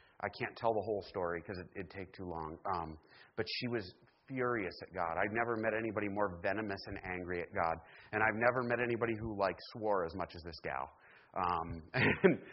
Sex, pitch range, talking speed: male, 100-130 Hz, 210 wpm